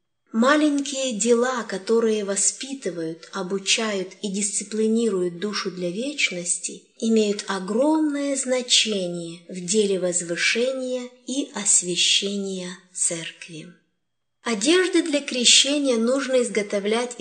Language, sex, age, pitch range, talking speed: English, female, 20-39, 190-260 Hz, 85 wpm